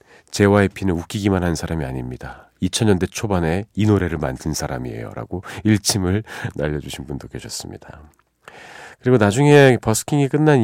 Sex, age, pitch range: male, 40-59, 85-125 Hz